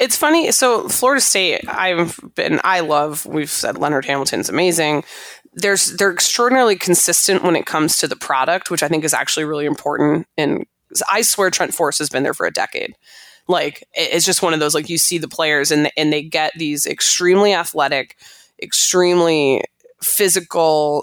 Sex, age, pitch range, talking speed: female, 20-39, 150-185 Hz, 175 wpm